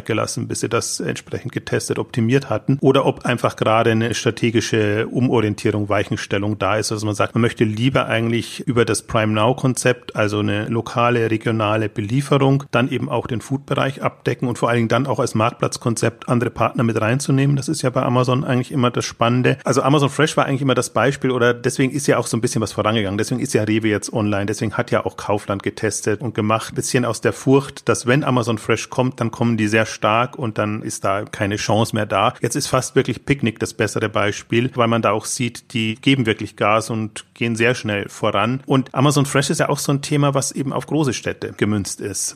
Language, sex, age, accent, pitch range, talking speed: German, male, 40-59, German, 110-135 Hz, 220 wpm